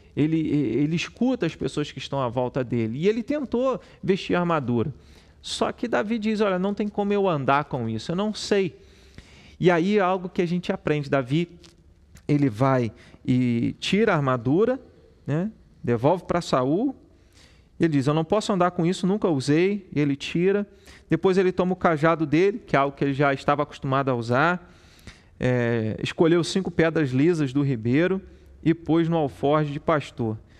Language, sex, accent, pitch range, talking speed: Portuguese, male, Brazilian, 135-185 Hz, 175 wpm